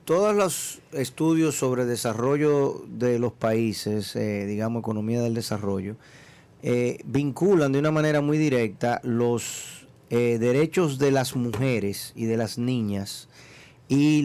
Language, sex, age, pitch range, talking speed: Spanish, male, 40-59, 120-145 Hz, 130 wpm